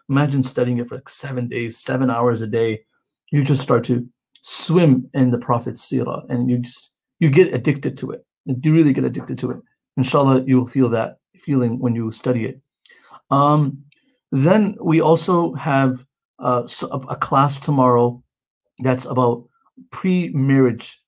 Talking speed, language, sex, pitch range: 160 wpm, English, male, 125-145 Hz